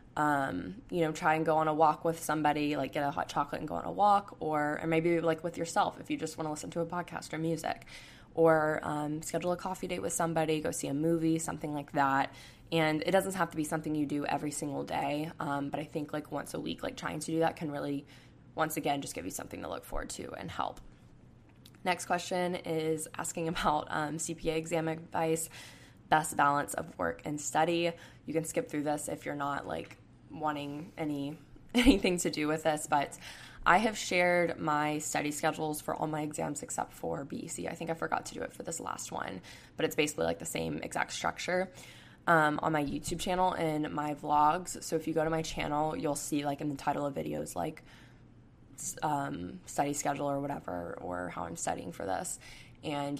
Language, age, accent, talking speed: English, 10-29, American, 215 wpm